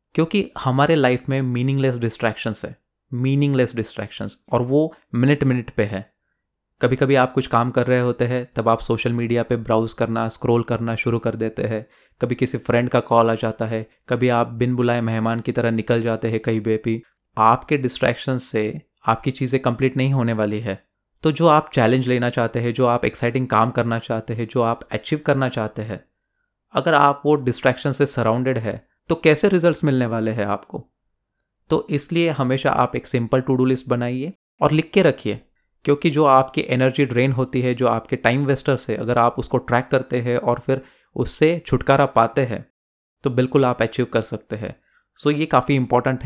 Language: Hindi